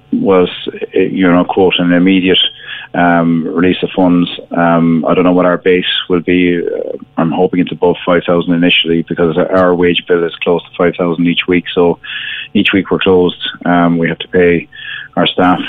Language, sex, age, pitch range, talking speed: English, male, 30-49, 85-90 Hz, 180 wpm